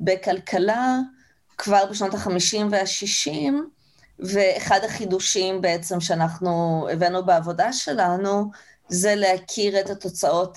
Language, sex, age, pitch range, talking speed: Hebrew, female, 20-39, 170-220 Hz, 90 wpm